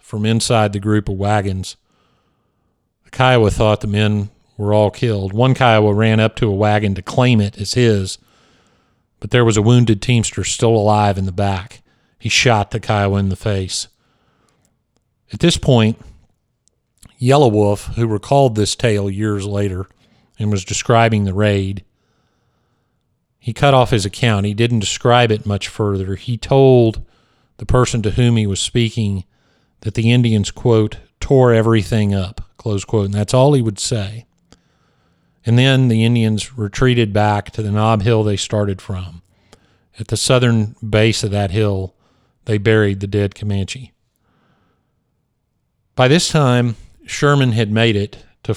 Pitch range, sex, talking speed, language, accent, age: 100-120 Hz, male, 160 wpm, English, American, 40-59